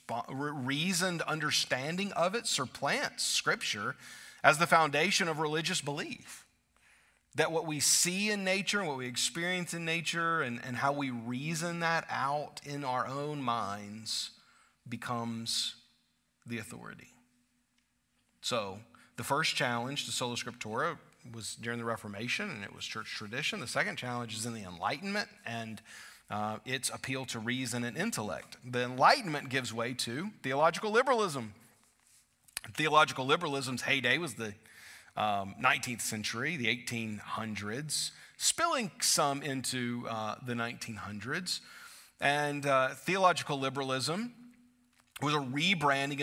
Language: English